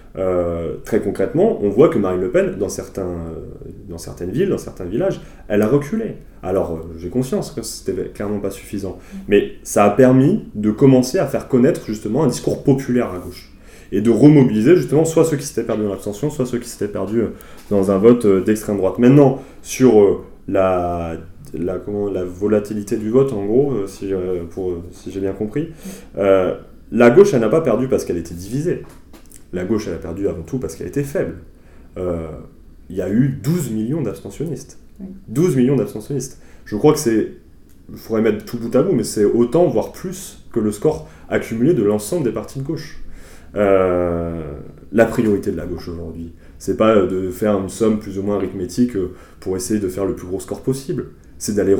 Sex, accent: male, French